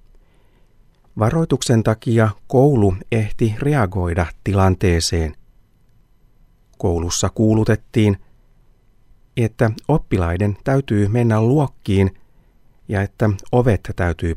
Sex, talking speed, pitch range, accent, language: male, 70 wpm, 90-115 Hz, native, Finnish